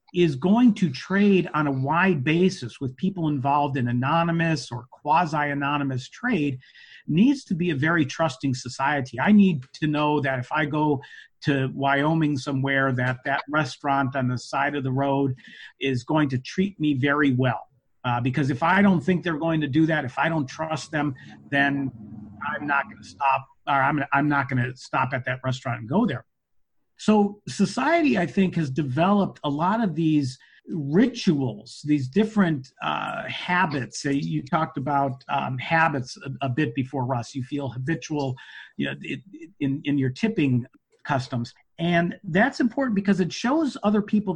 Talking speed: 175 wpm